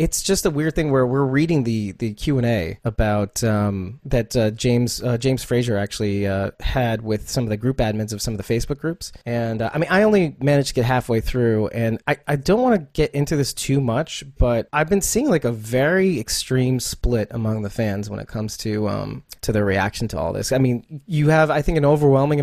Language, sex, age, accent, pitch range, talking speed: English, male, 30-49, American, 110-145 Hz, 235 wpm